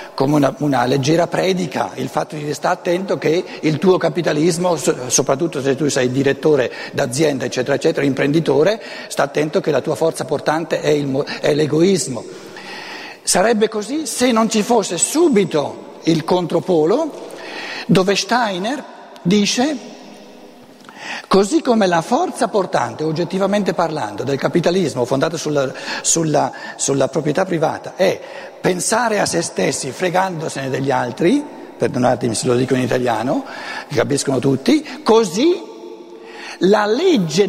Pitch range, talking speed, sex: 150-220 Hz, 125 wpm, male